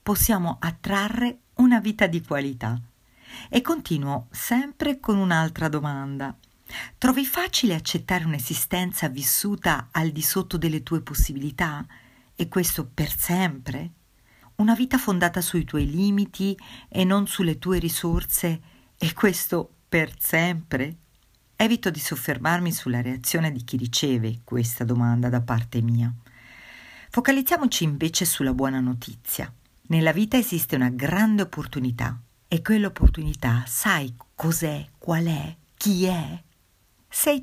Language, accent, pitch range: Italian, native, 135-200 Hz